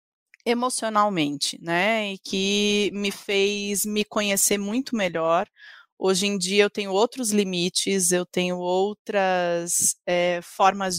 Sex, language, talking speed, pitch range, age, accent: female, Portuguese, 115 wpm, 180-210 Hz, 30-49, Brazilian